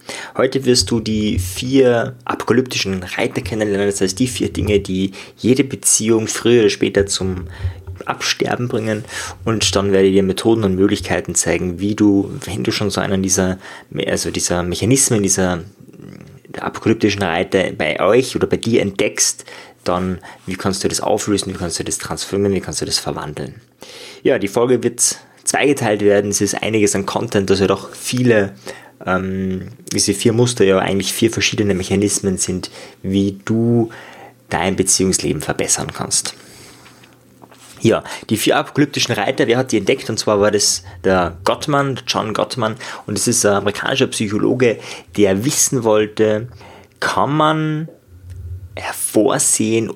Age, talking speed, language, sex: 20-39, 150 wpm, German, male